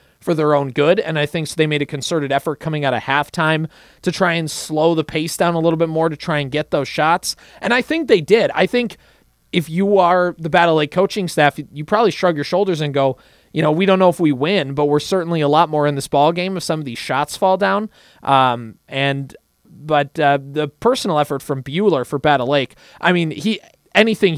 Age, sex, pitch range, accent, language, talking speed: 20-39, male, 140-180 Hz, American, English, 240 wpm